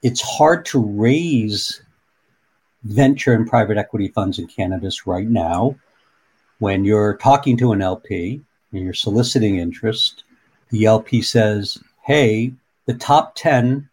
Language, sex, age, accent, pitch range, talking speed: English, male, 60-79, American, 105-130 Hz, 130 wpm